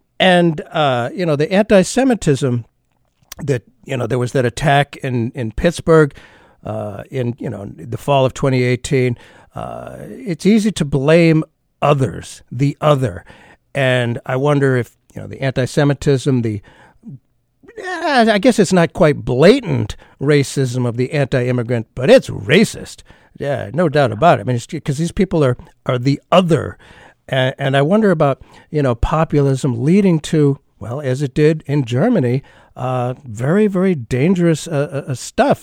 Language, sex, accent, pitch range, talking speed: English, male, American, 125-155 Hz, 155 wpm